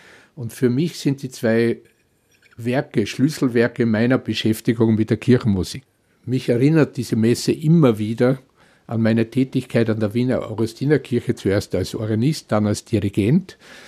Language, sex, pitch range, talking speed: German, male, 115-140 Hz, 140 wpm